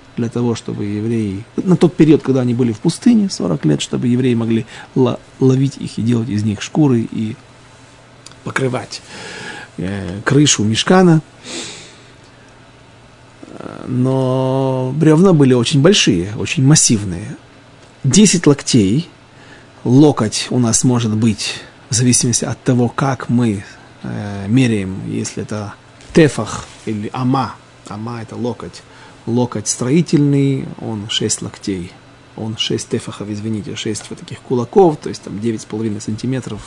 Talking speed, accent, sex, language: 130 wpm, native, male, Russian